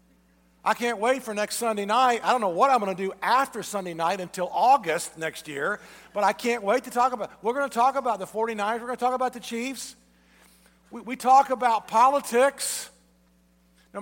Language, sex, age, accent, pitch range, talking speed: English, male, 50-69, American, 170-255 Hz, 210 wpm